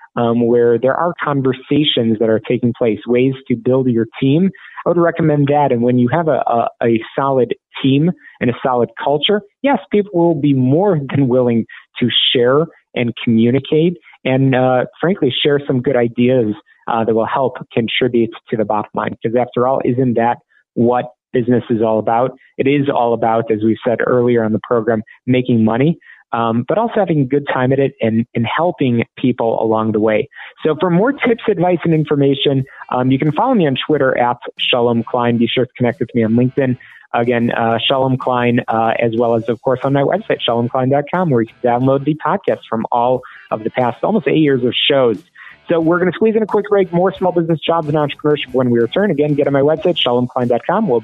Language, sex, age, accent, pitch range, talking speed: English, male, 30-49, American, 120-150 Hz, 210 wpm